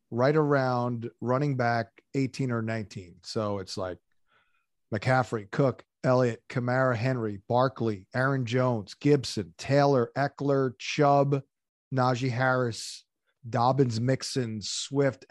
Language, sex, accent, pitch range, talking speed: English, male, American, 115-135 Hz, 105 wpm